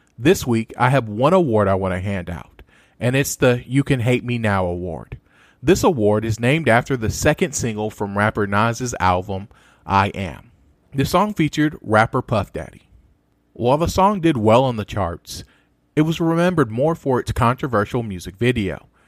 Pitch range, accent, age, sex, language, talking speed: 105-145 Hz, American, 40-59, male, English, 180 wpm